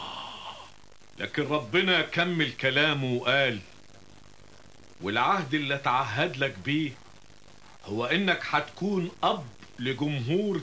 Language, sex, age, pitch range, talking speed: Italian, male, 50-69, 130-190 Hz, 85 wpm